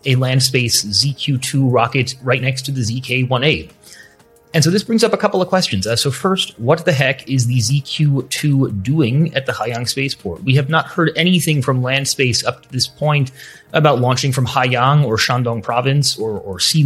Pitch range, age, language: 125-150 Hz, 30-49, English